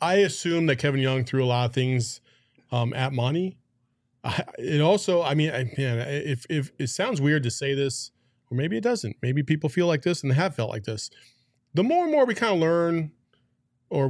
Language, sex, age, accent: English, male, 30-49, American